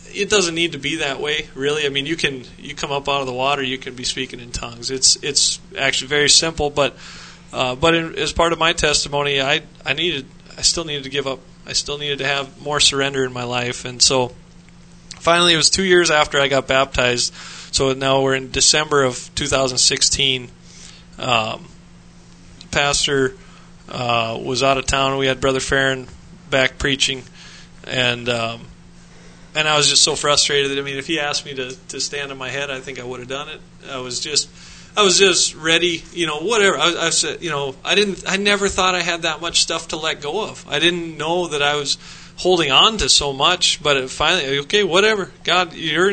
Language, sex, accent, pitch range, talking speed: English, male, American, 135-170 Hz, 215 wpm